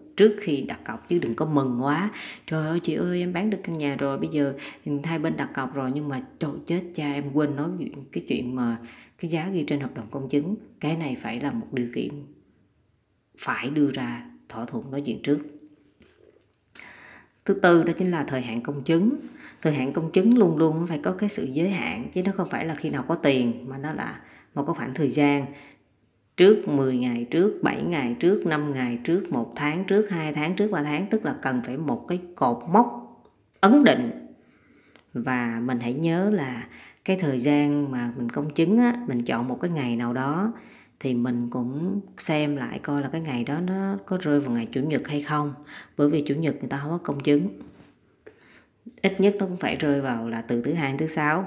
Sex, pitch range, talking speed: female, 130-175 Hz, 220 wpm